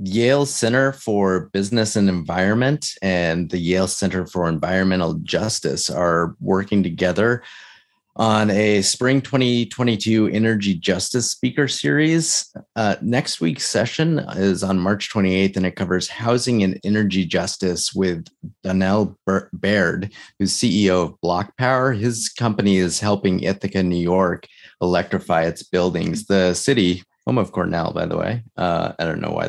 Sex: male